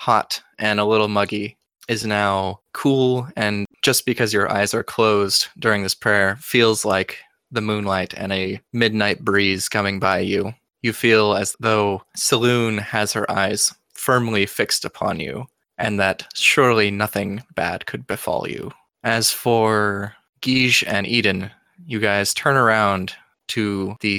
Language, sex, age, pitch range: English, male, 20-39, 100-115 Hz